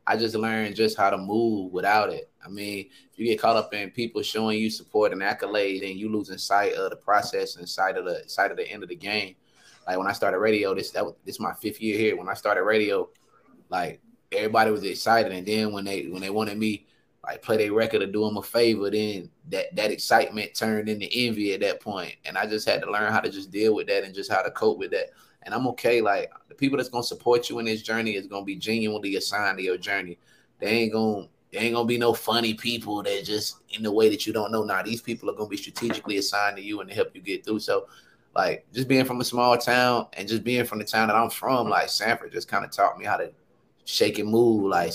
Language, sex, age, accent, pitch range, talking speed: English, male, 20-39, American, 100-125 Hz, 260 wpm